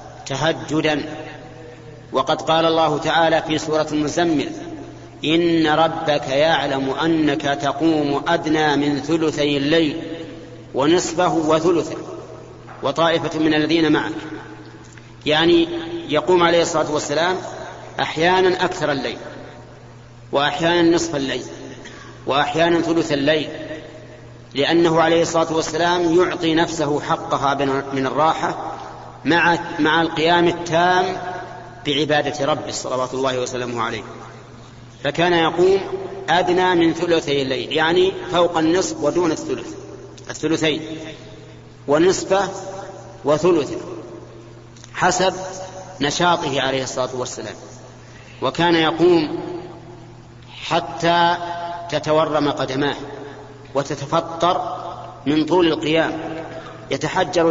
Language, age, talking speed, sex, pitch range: Arabic, 40-59, 90 wpm, male, 140-170 Hz